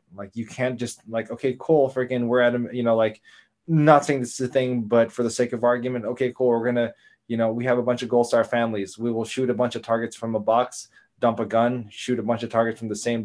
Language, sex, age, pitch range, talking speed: English, male, 20-39, 110-125 Hz, 275 wpm